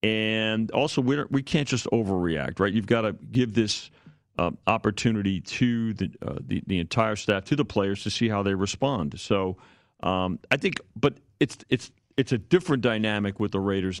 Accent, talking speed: American, 185 wpm